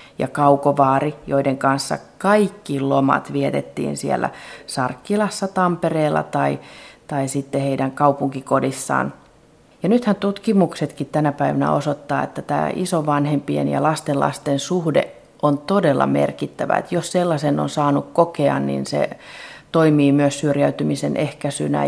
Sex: female